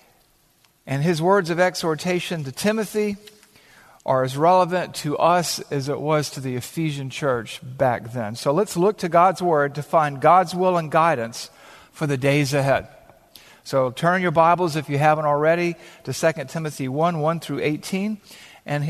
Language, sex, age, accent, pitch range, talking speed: English, male, 50-69, American, 135-175 Hz, 170 wpm